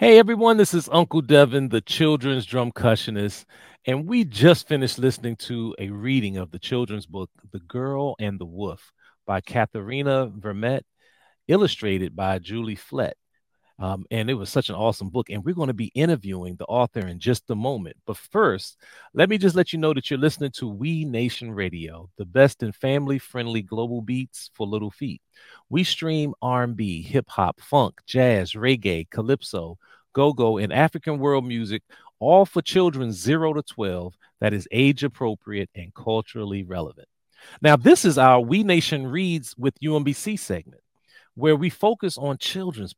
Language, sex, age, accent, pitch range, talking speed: English, male, 40-59, American, 110-155 Hz, 165 wpm